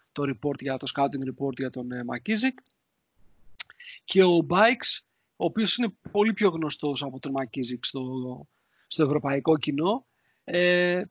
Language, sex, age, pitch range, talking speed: Greek, male, 40-59, 145-205 Hz, 140 wpm